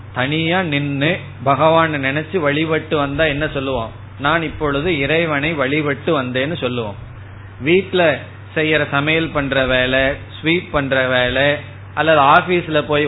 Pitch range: 125-160 Hz